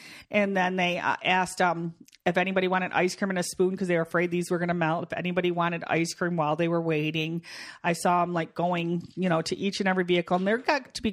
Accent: American